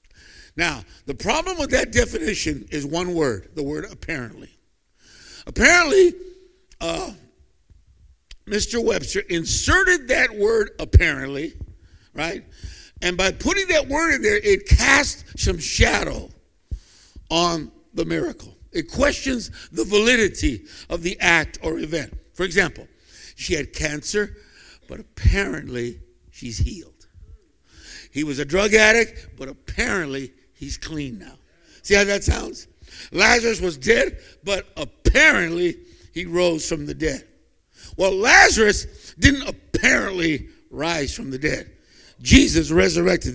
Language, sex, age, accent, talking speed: English, male, 60-79, American, 120 wpm